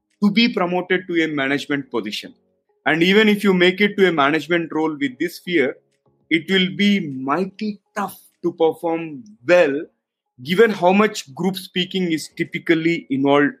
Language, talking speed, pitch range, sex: English, 160 wpm, 125-170 Hz, male